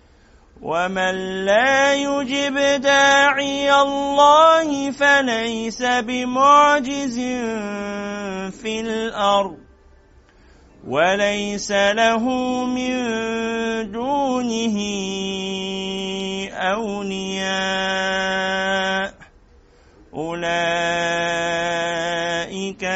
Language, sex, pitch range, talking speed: Arabic, male, 170-225 Hz, 40 wpm